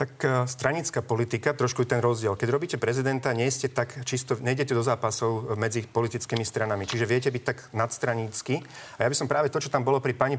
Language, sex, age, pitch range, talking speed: Slovak, male, 40-59, 125-150 Hz, 210 wpm